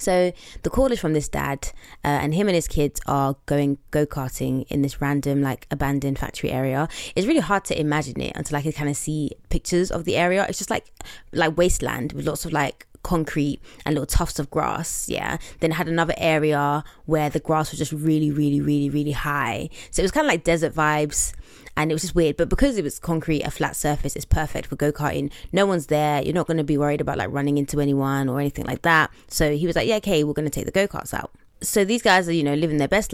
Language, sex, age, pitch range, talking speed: English, female, 20-39, 145-170 Hz, 245 wpm